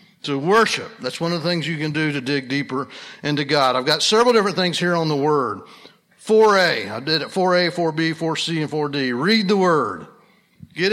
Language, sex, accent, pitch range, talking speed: English, male, American, 155-190 Hz, 205 wpm